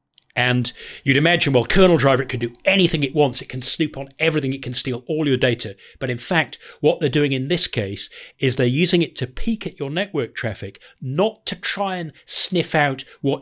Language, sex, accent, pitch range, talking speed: English, male, British, 120-150 Hz, 220 wpm